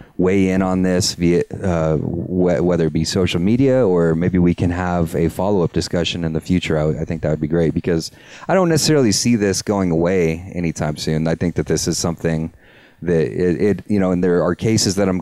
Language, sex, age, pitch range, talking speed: English, male, 30-49, 80-95 Hz, 220 wpm